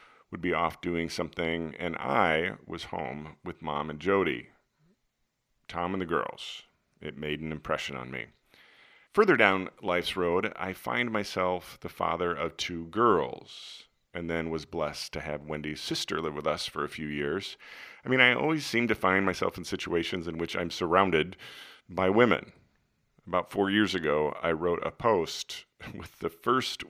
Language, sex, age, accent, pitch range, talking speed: English, male, 40-59, American, 80-95 Hz, 170 wpm